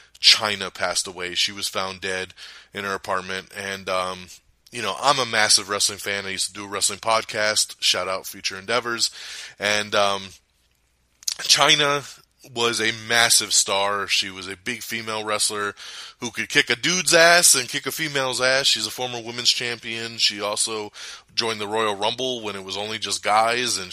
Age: 20-39